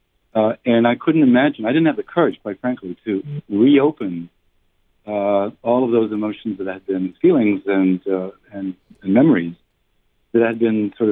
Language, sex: English, male